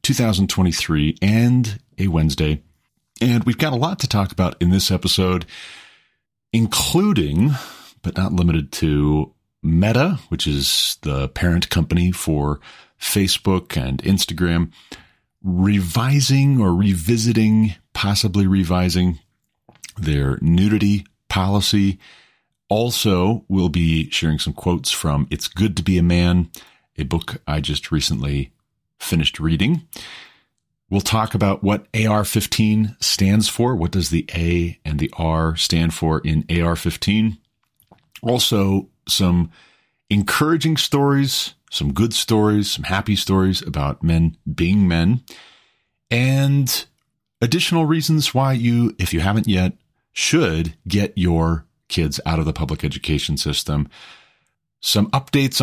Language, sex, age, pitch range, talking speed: English, male, 40-59, 80-110 Hz, 120 wpm